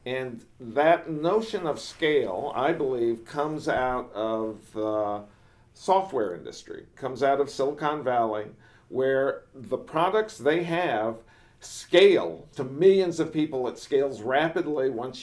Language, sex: English, male